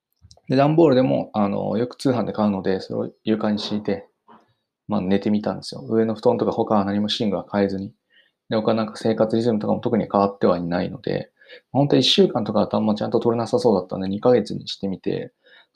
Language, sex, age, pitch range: Japanese, male, 20-39, 105-135 Hz